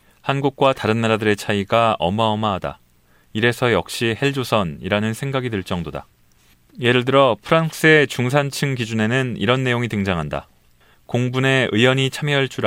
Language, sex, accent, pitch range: Korean, male, native, 105-135 Hz